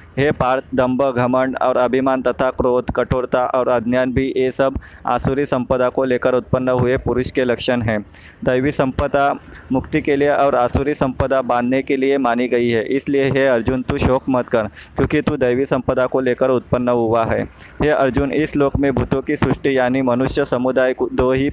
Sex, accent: male, native